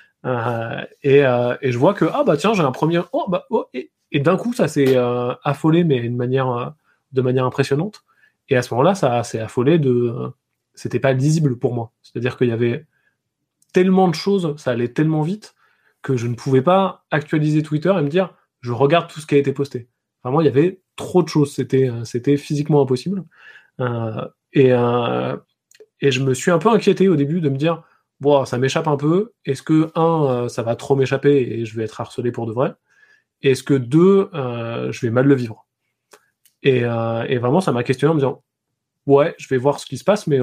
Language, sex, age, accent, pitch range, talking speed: French, male, 20-39, French, 120-155 Hz, 225 wpm